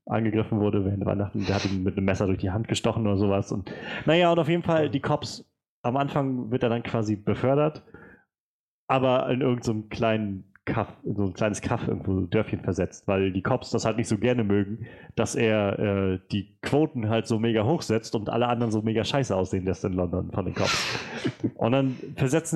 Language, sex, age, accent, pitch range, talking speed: German, male, 30-49, German, 100-125 Hz, 215 wpm